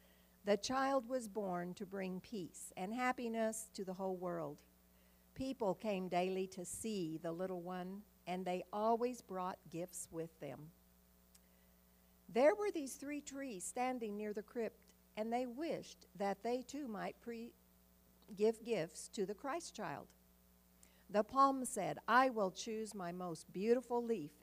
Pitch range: 165-235 Hz